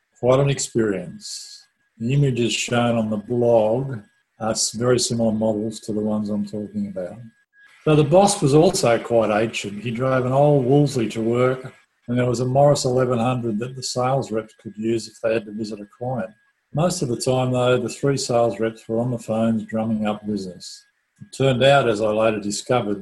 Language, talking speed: English, 195 wpm